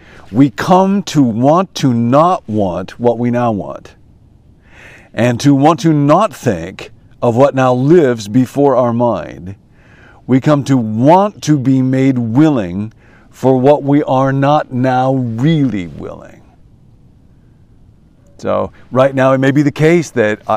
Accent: American